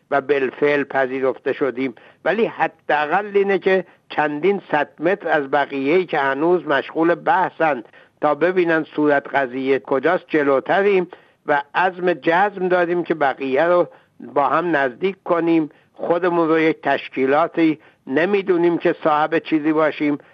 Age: 60-79